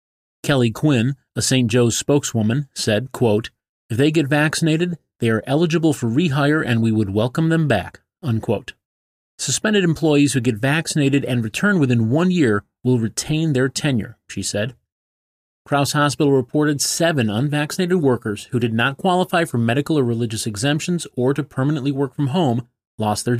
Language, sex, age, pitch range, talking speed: English, male, 30-49, 115-150 Hz, 160 wpm